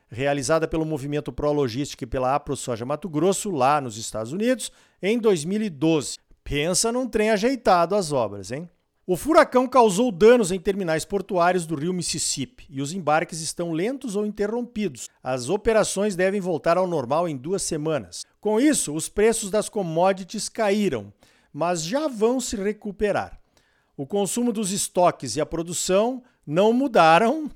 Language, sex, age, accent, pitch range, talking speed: Portuguese, male, 50-69, Brazilian, 155-215 Hz, 155 wpm